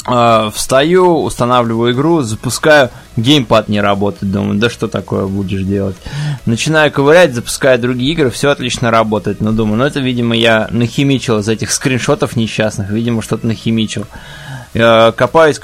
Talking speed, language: 140 wpm, Russian